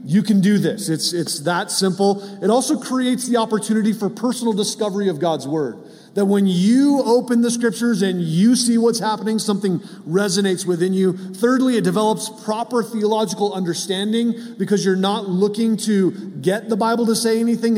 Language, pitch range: English, 185-230 Hz